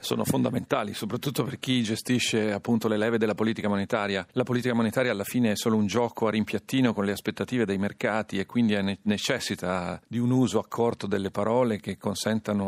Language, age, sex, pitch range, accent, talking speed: Italian, 40-59, male, 90-110 Hz, native, 190 wpm